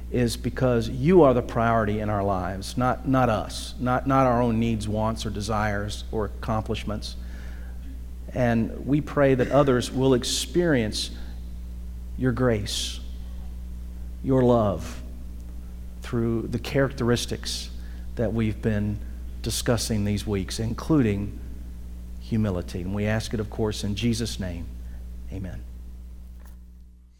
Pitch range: 95-135 Hz